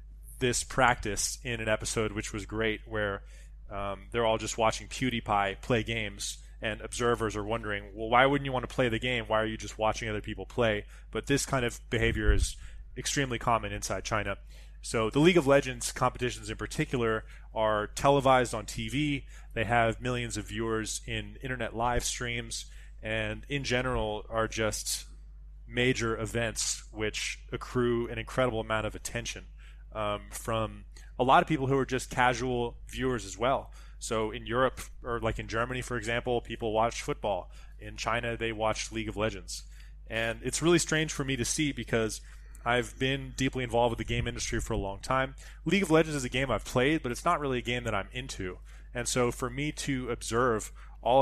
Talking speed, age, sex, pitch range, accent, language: 185 wpm, 20-39, male, 105-125 Hz, American, English